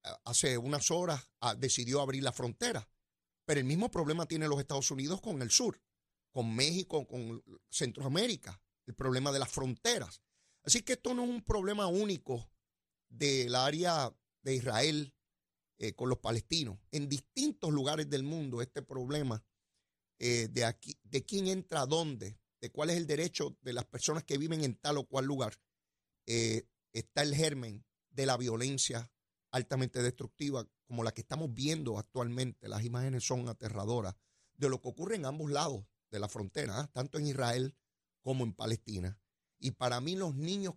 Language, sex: Spanish, male